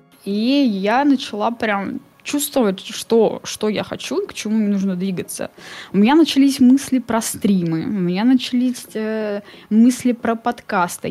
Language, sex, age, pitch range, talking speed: Russian, female, 10-29, 190-240 Hz, 145 wpm